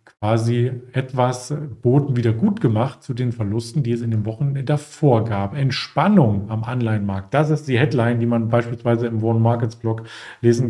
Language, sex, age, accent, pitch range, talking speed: German, male, 40-59, German, 115-140 Hz, 175 wpm